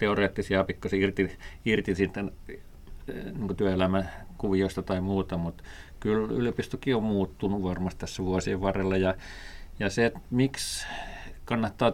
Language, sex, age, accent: Finnish, male, 40-59, native